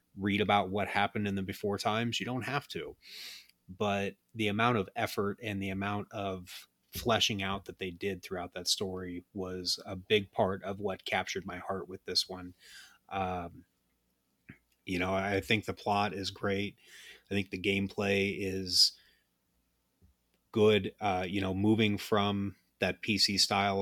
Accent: American